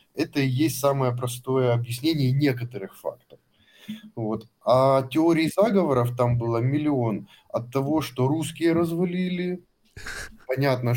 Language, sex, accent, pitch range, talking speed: Russian, male, native, 115-140 Hz, 115 wpm